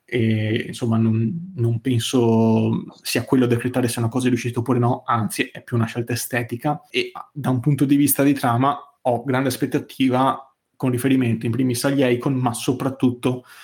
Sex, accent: male, native